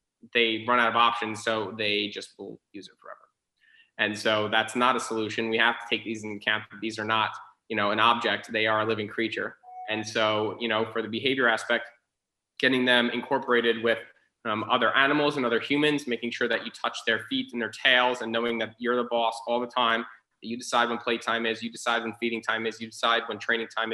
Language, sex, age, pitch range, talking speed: English, male, 20-39, 110-120 Hz, 230 wpm